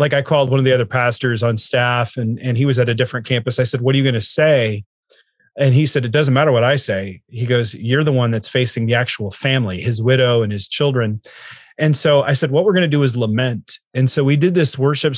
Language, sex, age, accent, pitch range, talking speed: English, male, 30-49, American, 125-160 Hz, 265 wpm